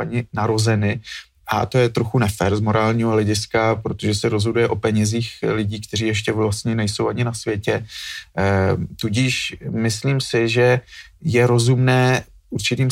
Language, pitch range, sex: Slovak, 110-120 Hz, male